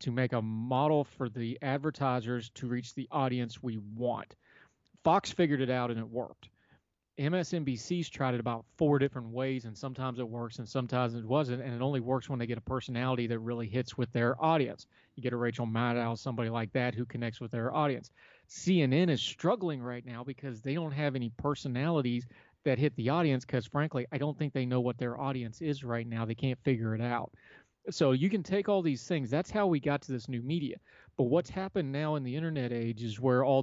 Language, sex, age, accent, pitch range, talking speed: English, male, 40-59, American, 120-150 Hz, 220 wpm